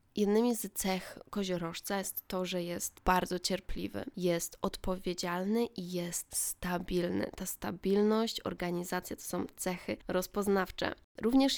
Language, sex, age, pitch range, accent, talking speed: Polish, female, 20-39, 180-205 Hz, native, 120 wpm